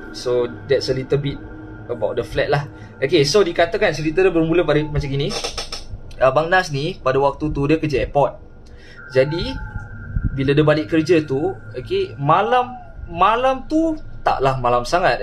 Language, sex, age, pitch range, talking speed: Malay, male, 20-39, 120-160 Hz, 160 wpm